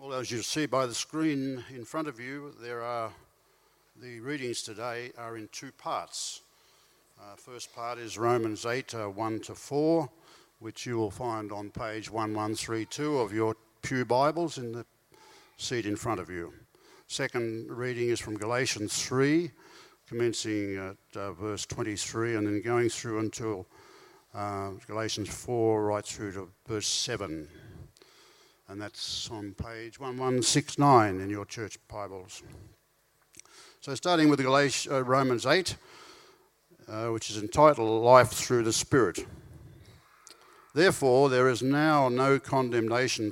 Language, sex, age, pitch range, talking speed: English, male, 60-79, 110-135 Hz, 140 wpm